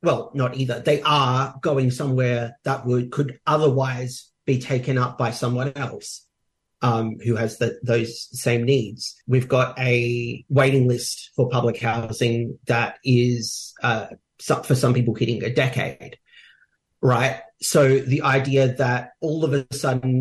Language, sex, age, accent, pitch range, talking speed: English, male, 40-59, Australian, 120-140 Hz, 150 wpm